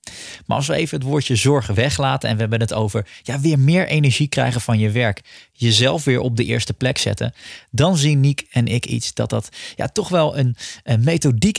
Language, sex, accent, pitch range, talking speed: Dutch, male, Dutch, 115-155 Hz, 215 wpm